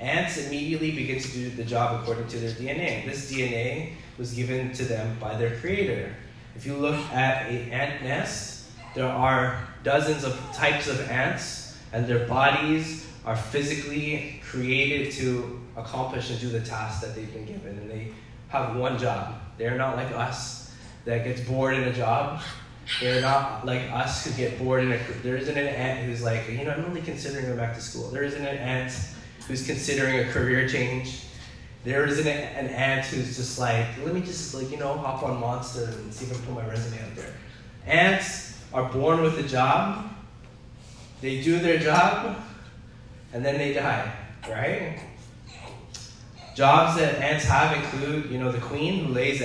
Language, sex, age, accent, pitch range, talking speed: English, male, 20-39, American, 115-140 Hz, 180 wpm